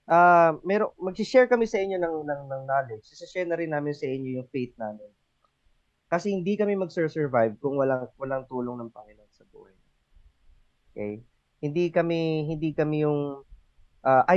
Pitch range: 115-165 Hz